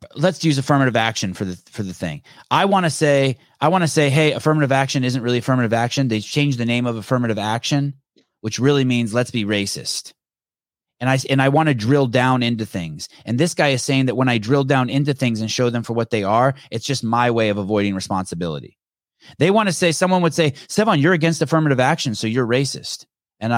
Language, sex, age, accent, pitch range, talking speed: English, male, 30-49, American, 115-155 Hz, 225 wpm